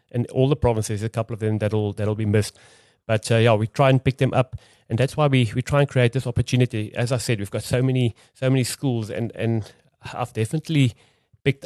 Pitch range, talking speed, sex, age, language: 110-130 Hz, 235 wpm, male, 30-49, English